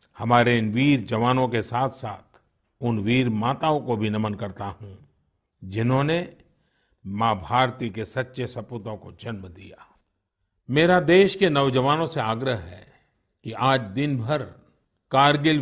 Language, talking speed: Hindi, 140 wpm